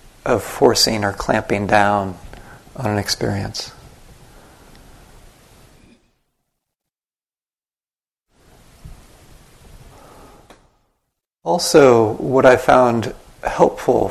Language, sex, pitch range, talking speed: English, male, 105-125 Hz, 55 wpm